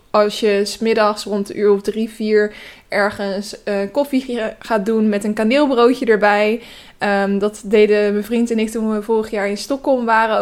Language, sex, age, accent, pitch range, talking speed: Dutch, female, 20-39, Dutch, 210-240 Hz, 190 wpm